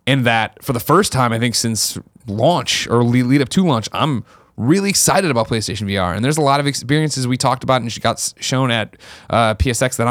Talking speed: 220 wpm